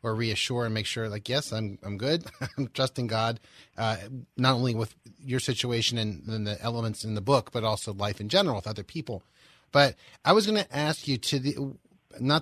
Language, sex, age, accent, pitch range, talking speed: English, male, 30-49, American, 115-150 Hz, 215 wpm